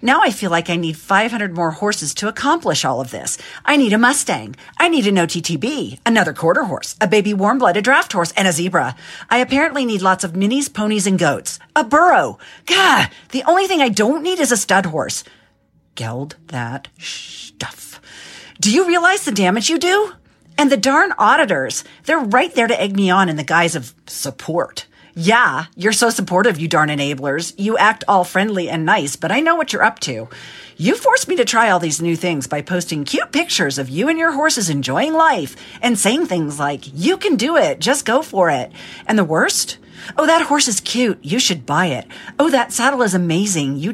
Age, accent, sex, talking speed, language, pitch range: 40-59, American, female, 205 wpm, English, 165-275 Hz